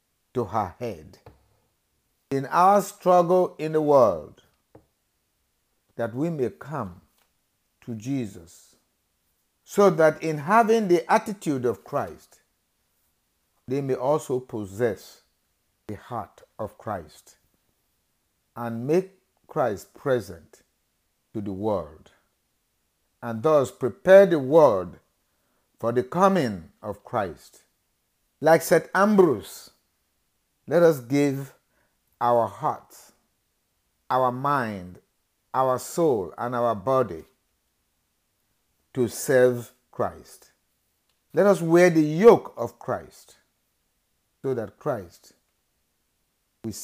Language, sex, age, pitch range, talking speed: English, male, 50-69, 105-155 Hz, 100 wpm